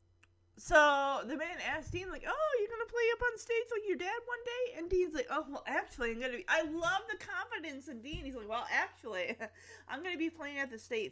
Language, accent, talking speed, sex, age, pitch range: English, American, 255 wpm, female, 30-49, 170-285 Hz